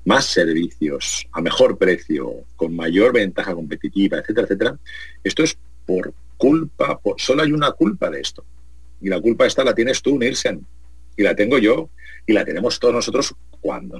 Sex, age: male, 40-59